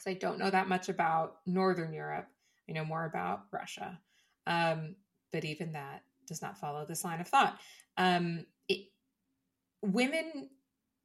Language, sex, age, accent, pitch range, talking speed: English, female, 20-39, American, 160-210 Hz, 140 wpm